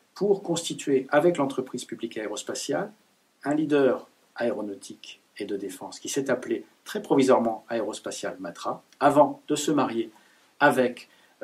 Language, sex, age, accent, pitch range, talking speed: French, male, 50-69, French, 120-160 Hz, 125 wpm